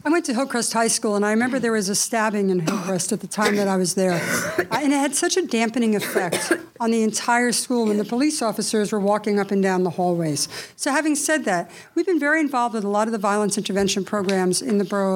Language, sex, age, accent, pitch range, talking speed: English, female, 60-79, American, 205-265 Hz, 250 wpm